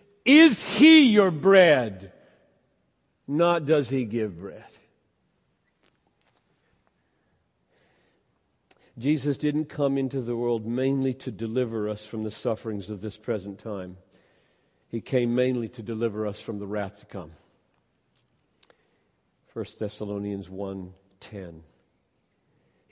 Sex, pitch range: male, 105-145 Hz